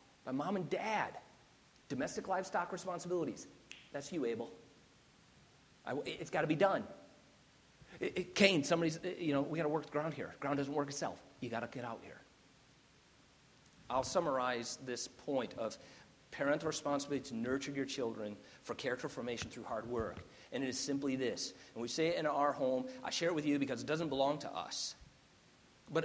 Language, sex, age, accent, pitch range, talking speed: English, male, 40-59, American, 125-150 Hz, 175 wpm